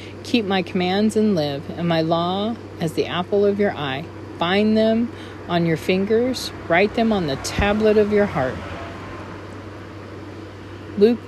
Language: English